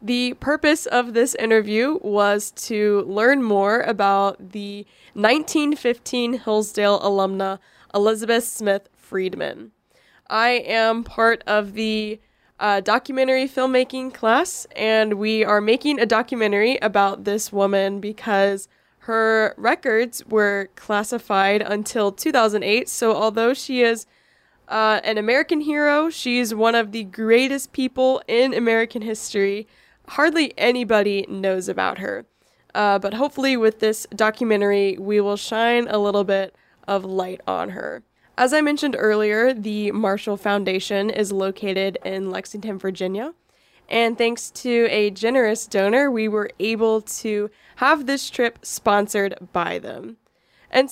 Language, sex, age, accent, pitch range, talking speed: English, female, 20-39, American, 205-240 Hz, 130 wpm